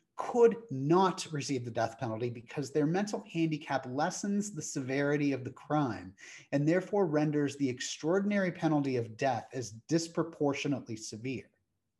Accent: American